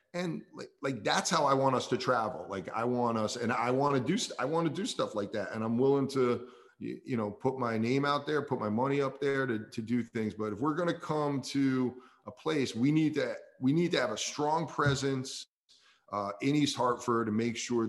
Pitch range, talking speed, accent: 110-135 Hz, 240 wpm, American